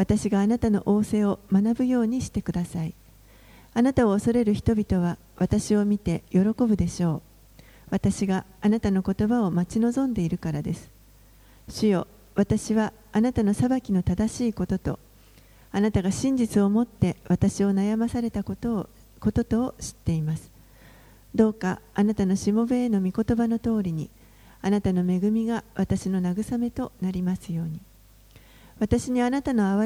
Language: Japanese